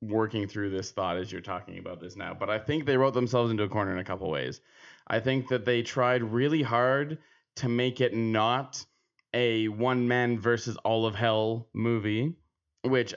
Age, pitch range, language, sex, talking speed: 20-39, 110-130 Hz, English, male, 195 wpm